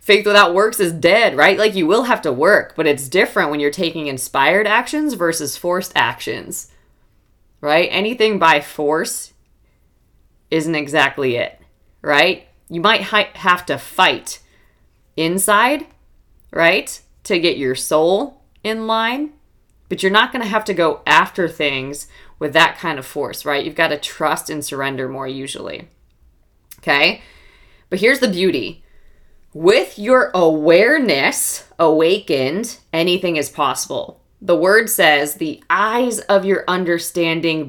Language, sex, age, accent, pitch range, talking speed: English, female, 20-39, American, 145-195 Hz, 135 wpm